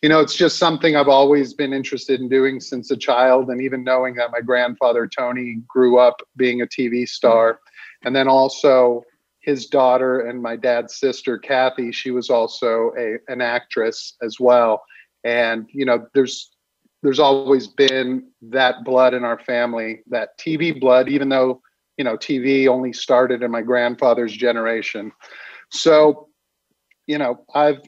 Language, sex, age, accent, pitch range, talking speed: English, male, 40-59, American, 120-135 Hz, 160 wpm